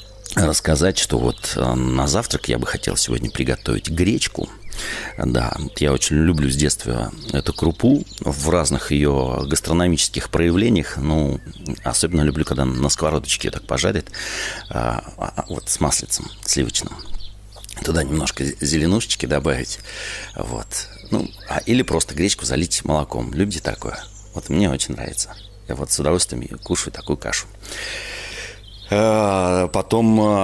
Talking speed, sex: 120 wpm, male